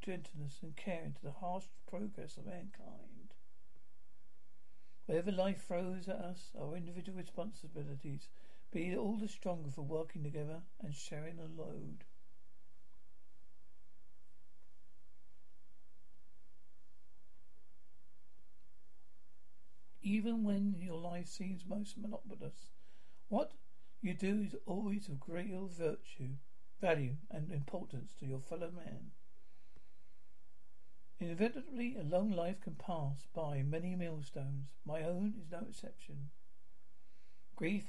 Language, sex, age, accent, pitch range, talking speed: English, male, 60-79, British, 160-205 Hz, 105 wpm